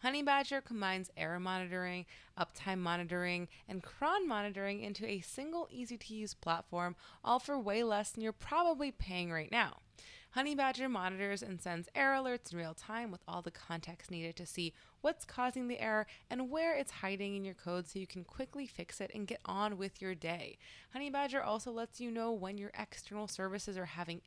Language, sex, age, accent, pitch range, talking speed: English, female, 20-39, American, 185-260 Hz, 195 wpm